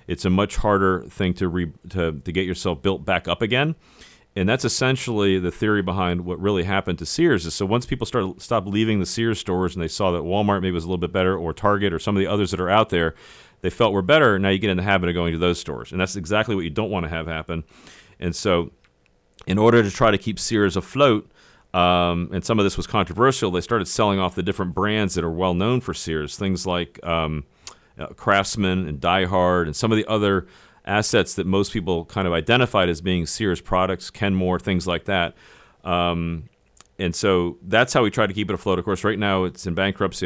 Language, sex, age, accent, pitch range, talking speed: English, male, 40-59, American, 85-100 Hz, 235 wpm